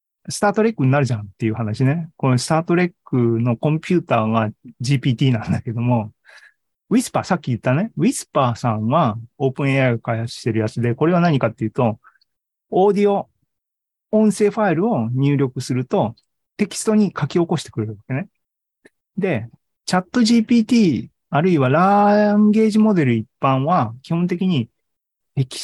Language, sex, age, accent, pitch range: Japanese, male, 40-59, native, 120-180 Hz